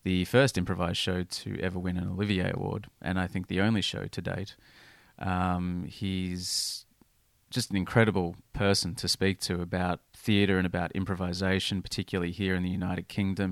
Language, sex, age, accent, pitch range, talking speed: English, male, 30-49, Australian, 90-110 Hz, 170 wpm